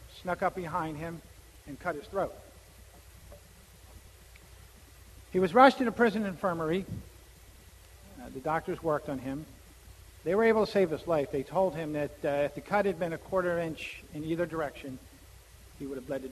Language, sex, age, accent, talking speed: English, male, 50-69, American, 180 wpm